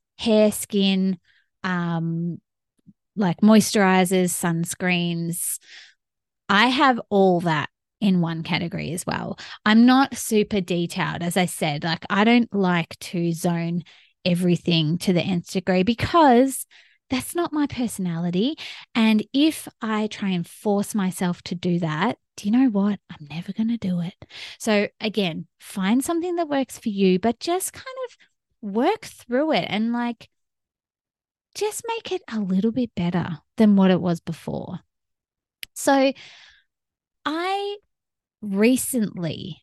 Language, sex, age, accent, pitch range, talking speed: English, female, 20-39, Australian, 175-245 Hz, 135 wpm